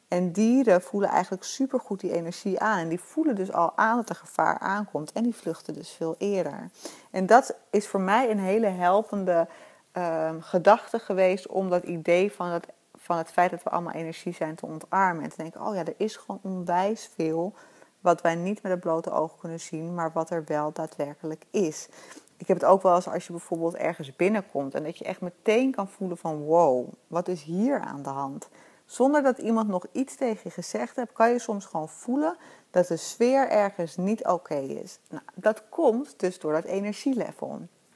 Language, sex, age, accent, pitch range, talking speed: Dutch, female, 30-49, Dutch, 170-215 Hz, 200 wpm